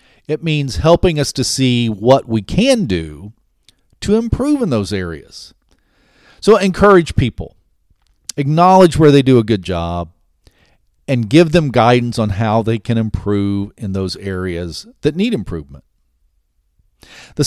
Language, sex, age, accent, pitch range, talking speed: English, male, 50-69, American, 100-150 Hz, 140 wpm